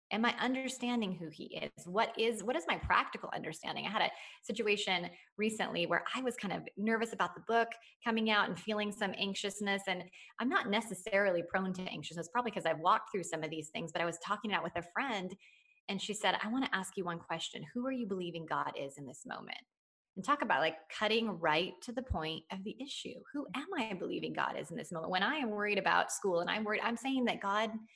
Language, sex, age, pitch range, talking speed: English, female, 20-39, 175-225 Hz, 240 wpm